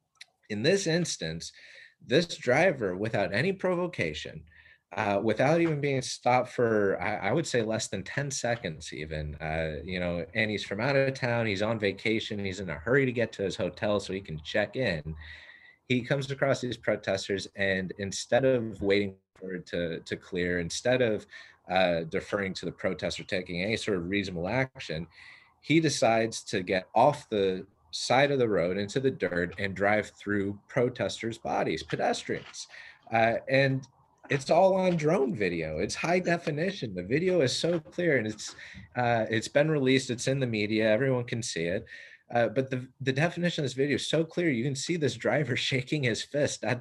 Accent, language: American, English